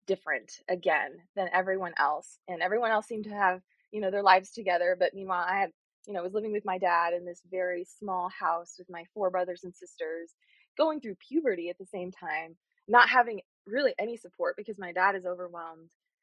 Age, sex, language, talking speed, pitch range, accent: 20-39, female, English, 205 wpm, 180-230 Hz, American